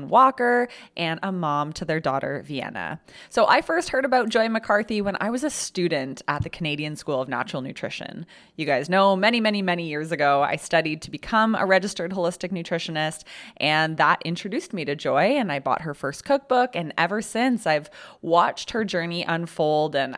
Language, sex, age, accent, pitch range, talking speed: English, female, 20-39, American, 155-220 Hz, 190 wpm